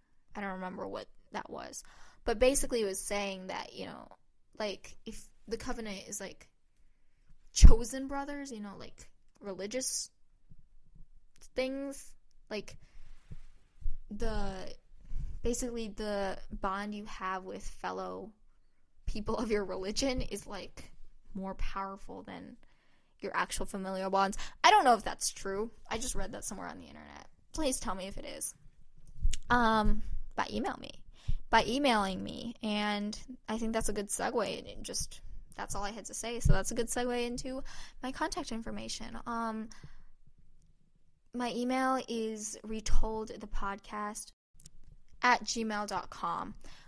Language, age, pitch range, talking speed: English, 10-29, 200-245 Hz, 135 wpm